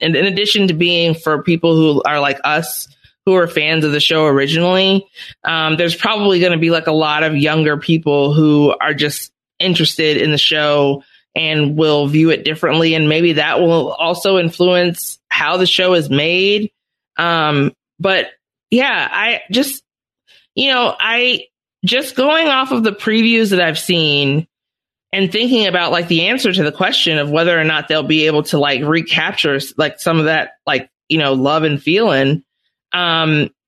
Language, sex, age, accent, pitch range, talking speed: English, female, 20-39, American, 155-200 Hz, 180 wpm